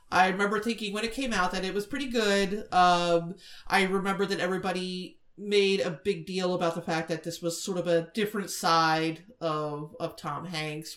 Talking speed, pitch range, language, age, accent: 195 wpm, 165-200 Hz, English, 30-49, American